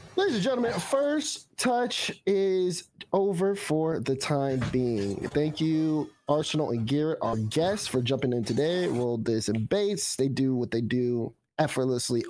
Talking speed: 155 wpm